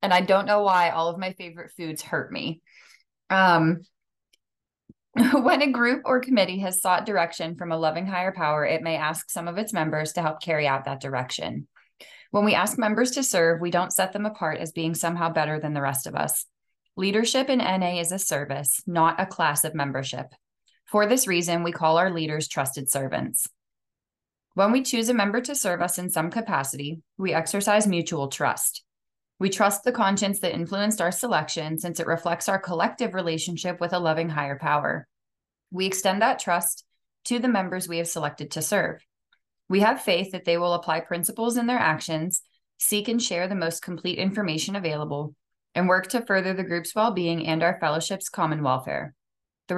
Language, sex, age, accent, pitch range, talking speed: English, female, 20-39, American, 160-200 Hz, 190 wpm